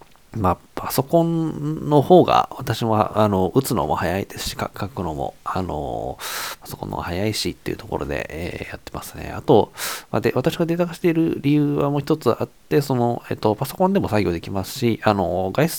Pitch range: 95-130 Hz